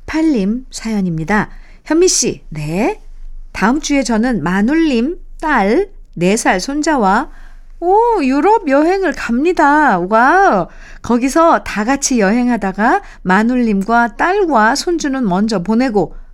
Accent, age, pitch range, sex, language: native, 50-69, 195-295 Hz, female, Korean